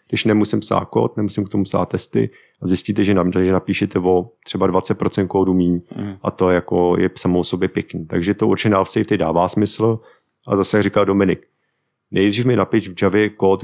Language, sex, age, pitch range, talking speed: Czech, male, 30-49, 95-105 Hz, 190 wpm